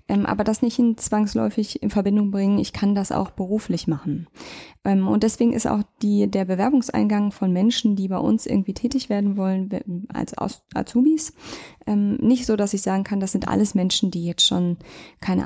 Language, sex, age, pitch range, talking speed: German, female, 20-39, 185-220 Hz, 175 wpm